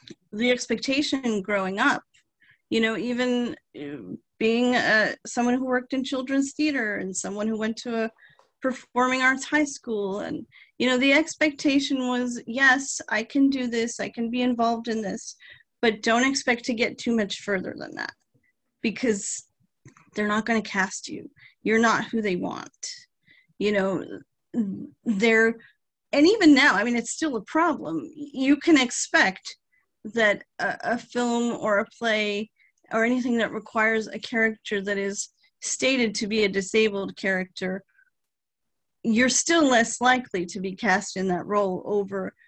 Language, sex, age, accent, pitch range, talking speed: English, female, 40-59, American, 210-260 Hz, 165 wpm